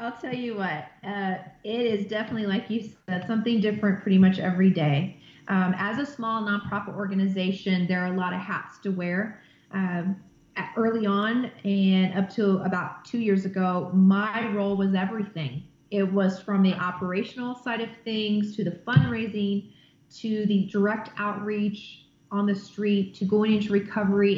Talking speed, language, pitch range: 165 wpm, English, 185-210 Hz